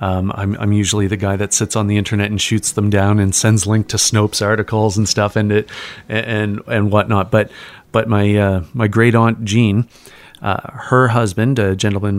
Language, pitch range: English, 100-115 Hz